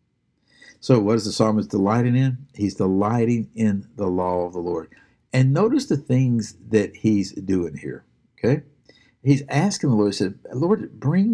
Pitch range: 100-130 Hz